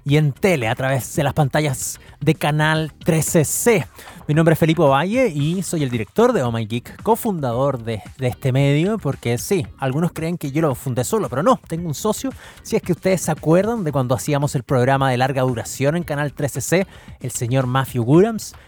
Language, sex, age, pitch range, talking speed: Spanish, male, 30-49, 130-175 Hz, 205 wpm